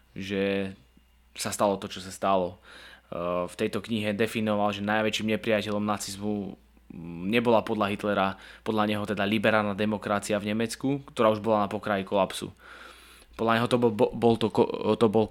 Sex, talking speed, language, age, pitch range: male, 140 wpm, English, 20-39, 105-115 Hz